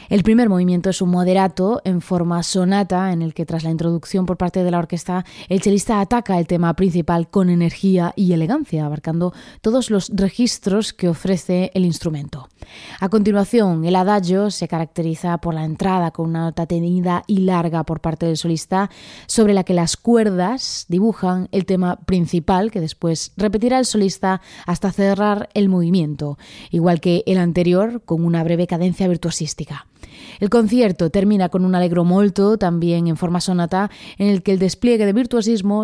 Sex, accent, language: female, Spanish, Spanish